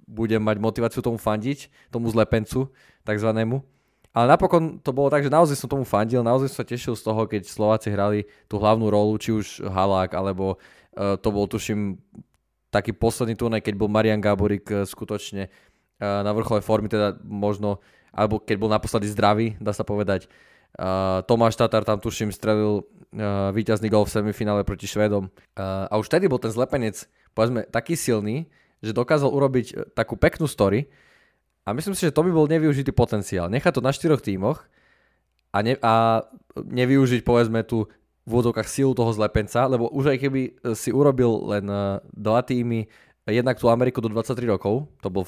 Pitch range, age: 105-125 Hz, 20-39